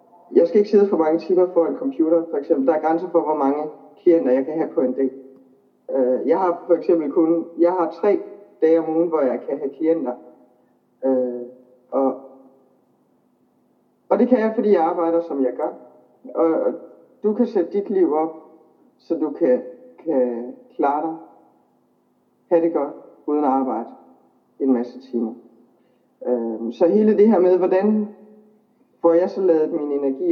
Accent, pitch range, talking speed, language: Danish, 135-185 Hz, 170 wpm, English